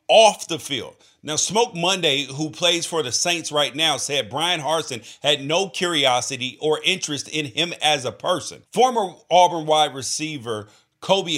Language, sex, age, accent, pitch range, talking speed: English, male, 40-59, American, 150-205 Hz, 165 wpm